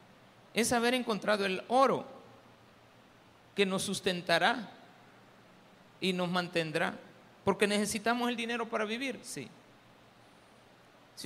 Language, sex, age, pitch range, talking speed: Spanish, male, 50-69, 160-240 Hz, 100 wpm